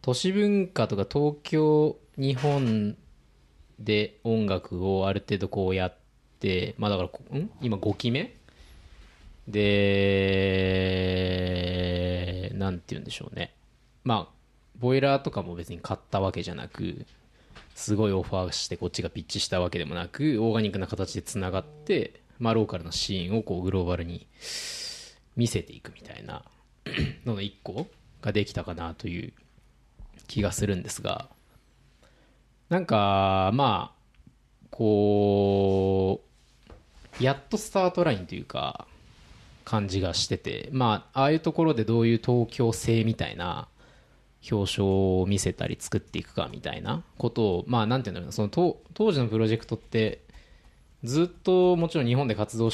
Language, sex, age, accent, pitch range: Japanese, male, 20-39, native, 95-125 Hz